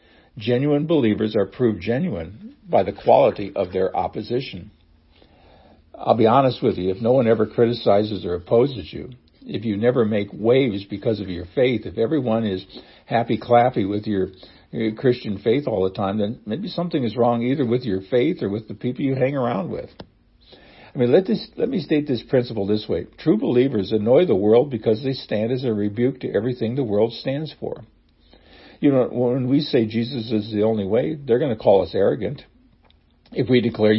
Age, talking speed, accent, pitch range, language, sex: 60-79, 190 wpm, American, 105-125 Hz, English, male